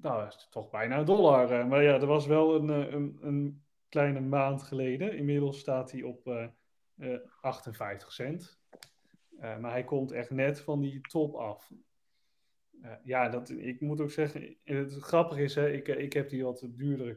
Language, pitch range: Dutch, 125-155 Hz